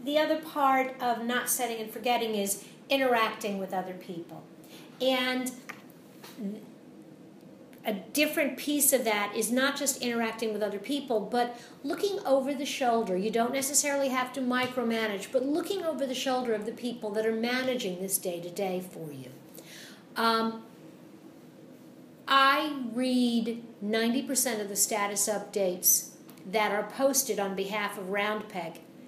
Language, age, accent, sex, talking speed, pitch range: English, 50-69, American, female, 140 wpm, 210-265 Hz